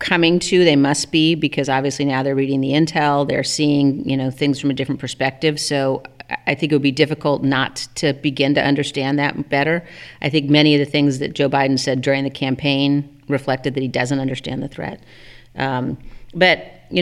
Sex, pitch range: female, 135-150 Hz